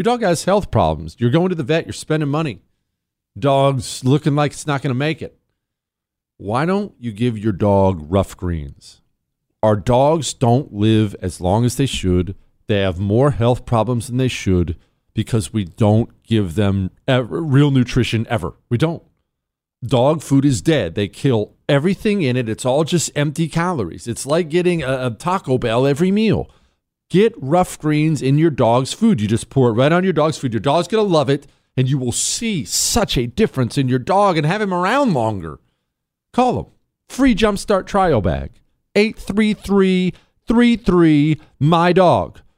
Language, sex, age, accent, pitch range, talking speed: English, male, 40-59, American, 120-180 Hz, 175 wpm